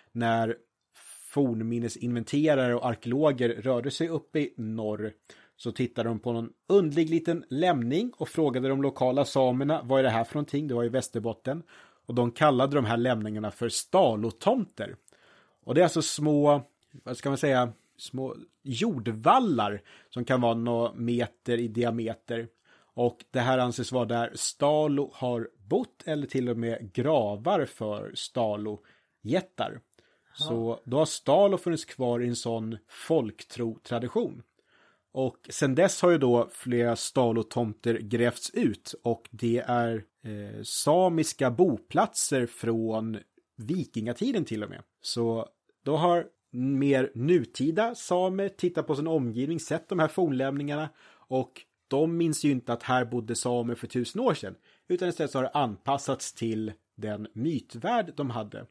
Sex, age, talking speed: male, 30-49, 145 wpm